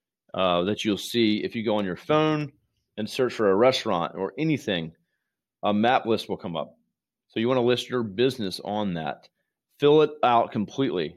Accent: American